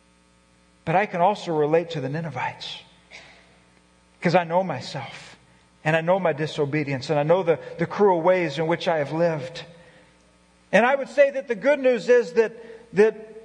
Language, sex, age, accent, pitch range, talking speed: English, male, 40-59, American, 165-255 Hz, 180 wpm